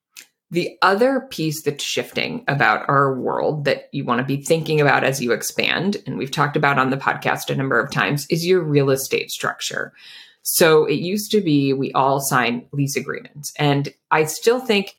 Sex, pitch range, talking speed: female, 140-175 Hz, 190 wpm